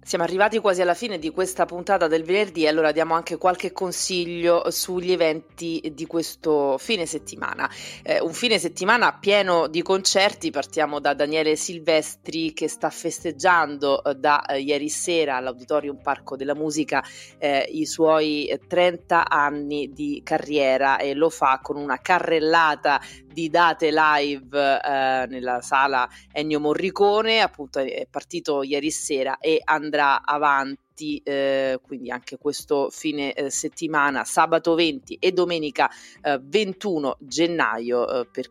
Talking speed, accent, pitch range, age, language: 135 wpm, native, 140-170 Hz, 30-49, Italian